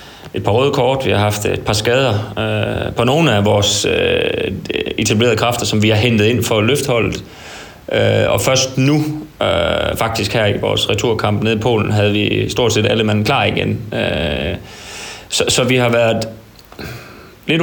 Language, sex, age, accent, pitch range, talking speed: Danish, male, 30-49, native, 105-125 Hz, 180 wpm